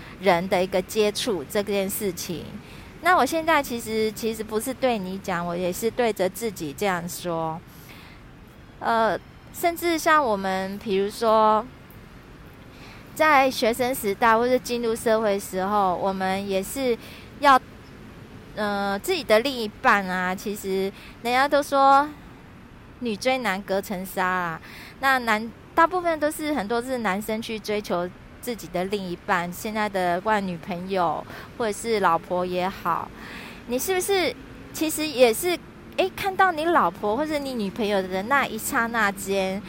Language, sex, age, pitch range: Chinese, female, 20-39, 190-260 Hz